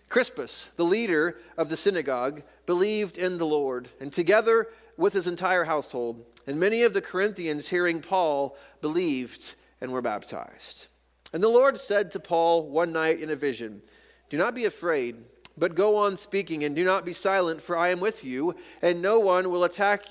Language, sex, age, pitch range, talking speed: English, male, 40-59, 145-195 Hz, 180 wpm